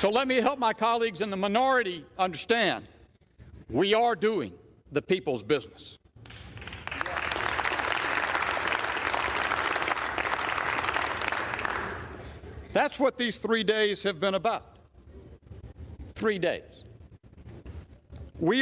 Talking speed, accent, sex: 85 wpm, American, male